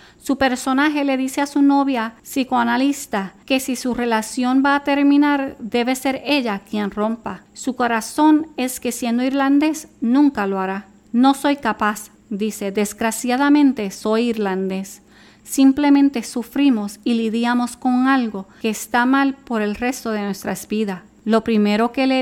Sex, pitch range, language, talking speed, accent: female, 210-270 Hz, Spanish, 150 wpm, American